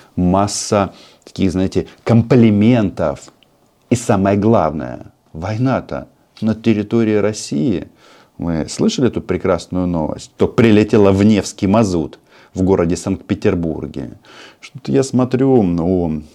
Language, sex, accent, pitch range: Russian, male, native, 85-110 Hz